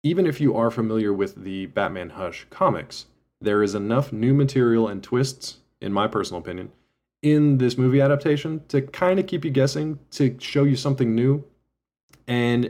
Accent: American